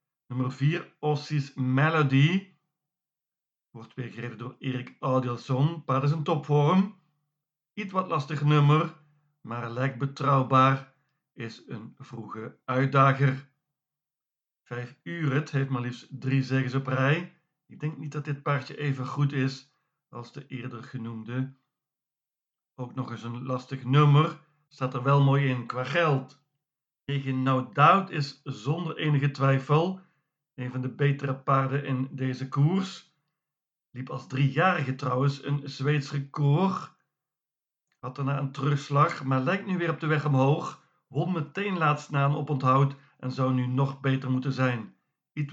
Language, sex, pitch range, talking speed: Dutch, male, 130-150 Hz, 140 wpm